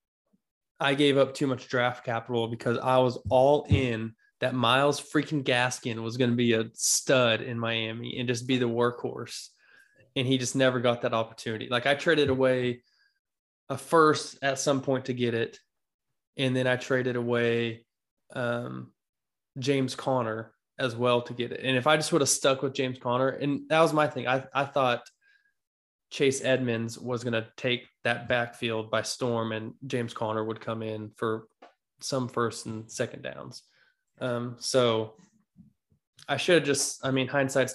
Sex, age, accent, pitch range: male, 20-39, American, 115-135 Hz